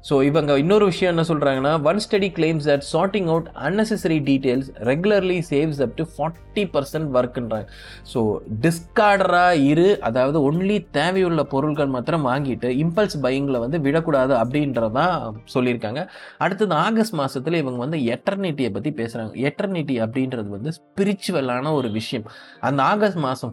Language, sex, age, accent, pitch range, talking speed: Tamil, male, 20-39, native, 125-170 Hz, 140 wpm